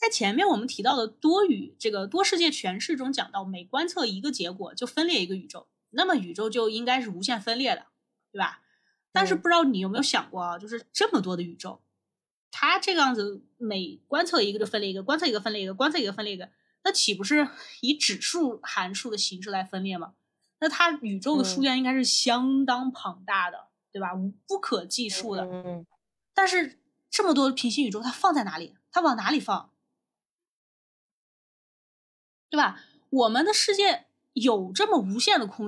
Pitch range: 210-315 Hz